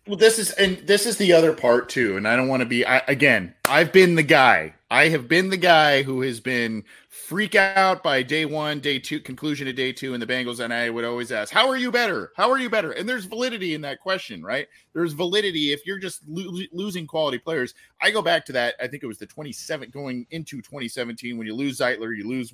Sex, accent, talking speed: male, American, 250 wpm